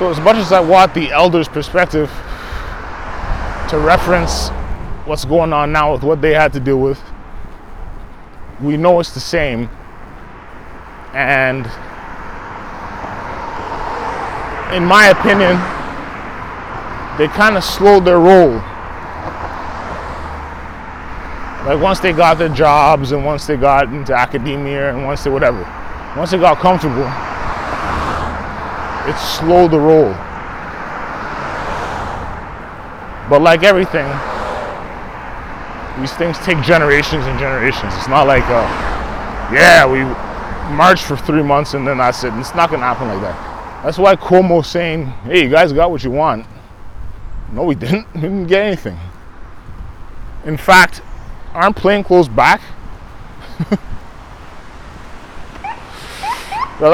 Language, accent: English, American